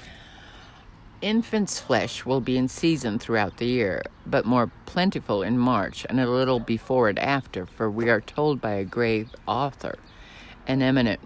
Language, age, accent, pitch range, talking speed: English, 60-79, American, 105-135 Hz, 160 wpm